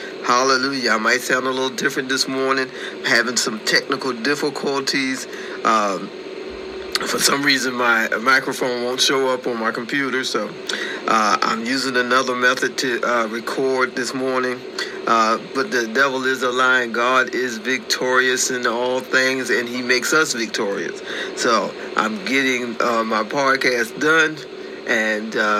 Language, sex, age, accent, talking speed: English, male, 40-59, American, 145 wpm